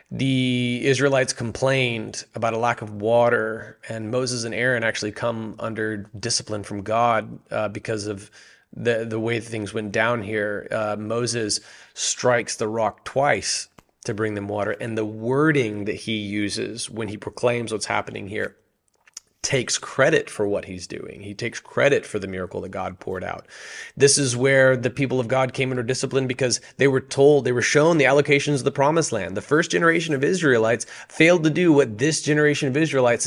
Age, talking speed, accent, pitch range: 30-49, 185 wpm, American, 110-145 Hz